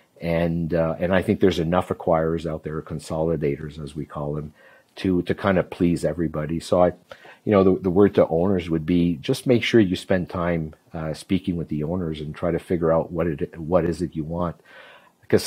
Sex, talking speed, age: male, 215 wpm, 50-69